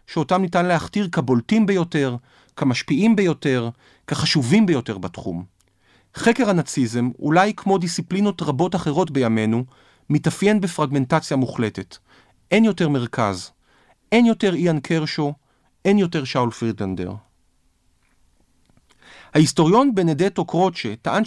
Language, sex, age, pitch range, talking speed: Hebrew, male, 40-59, 125-190 Hz, 100 wpm